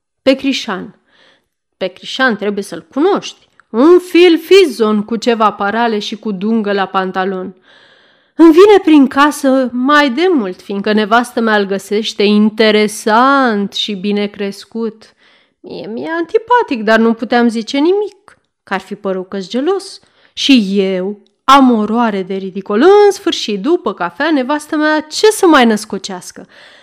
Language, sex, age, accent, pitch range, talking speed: Romanian, female, 30-49, native, 210-300 Hz, 145 wpm